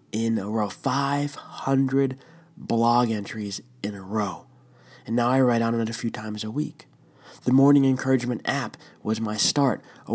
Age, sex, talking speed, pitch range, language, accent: 20-39, male, 165 wpm, 115-145 Hz, English, American